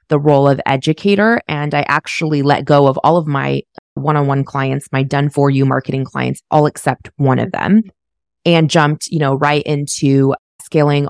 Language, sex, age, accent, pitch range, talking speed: English, female, 20-39, American, 140-170 Hz, 180 wpm